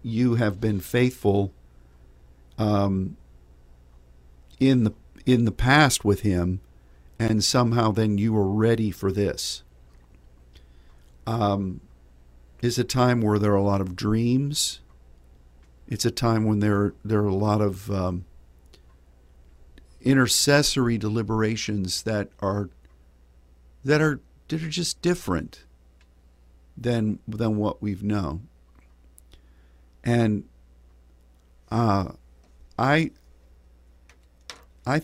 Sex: male